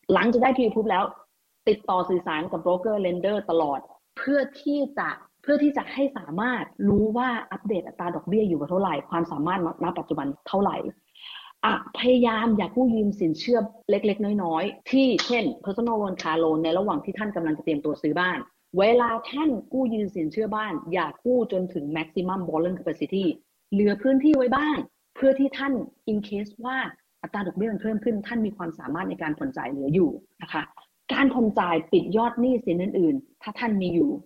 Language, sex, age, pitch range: Thai, female, 30-49, 170-240 Hz